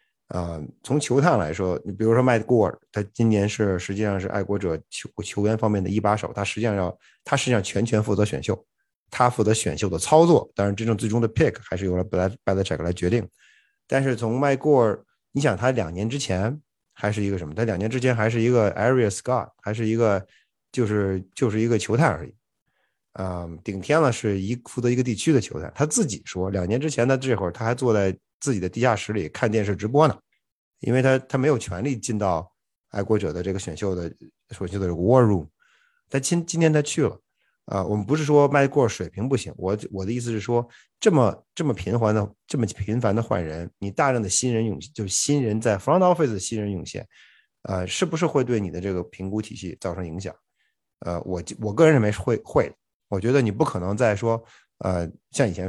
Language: Chinese